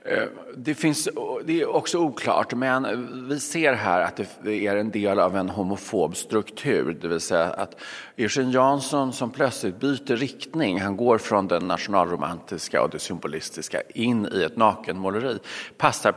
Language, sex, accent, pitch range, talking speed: English, male, Swedish, 100-135 Hz, 160 wpm